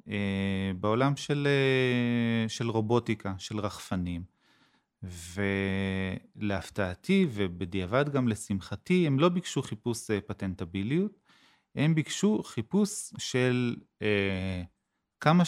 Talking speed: 80 wpm